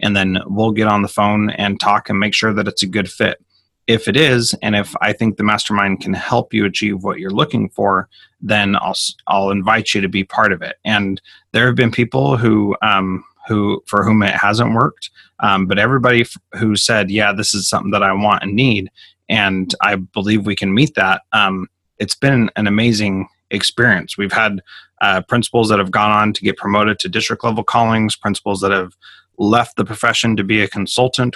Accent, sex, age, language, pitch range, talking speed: American, male, 30-49, English, 100-115 Hz, 210 wpm